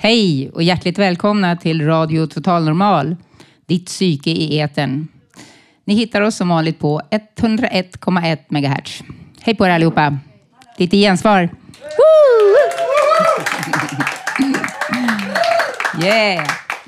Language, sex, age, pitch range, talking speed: Swedish, female, 30-49, 165-210 Hz, 95 wpm